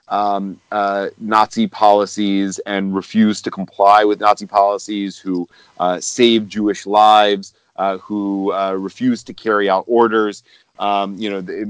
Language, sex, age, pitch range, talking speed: English, male, 30-49, 100-115 Hz, 145 wpm